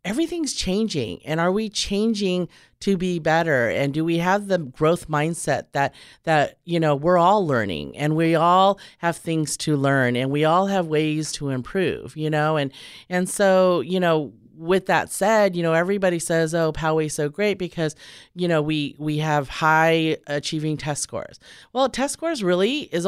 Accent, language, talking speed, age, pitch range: American, English, 180 wpm, 40-59, 150-190 Hz